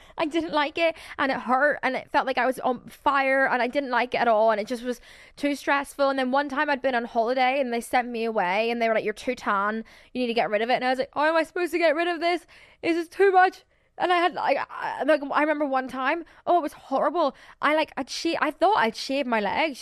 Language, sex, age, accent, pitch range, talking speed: English, female, 10-29, British, 230-290 Hz, 285 wpm